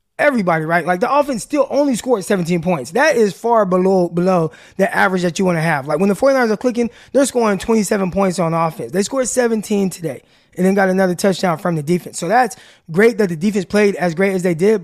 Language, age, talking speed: English, 20-39, 235 wpm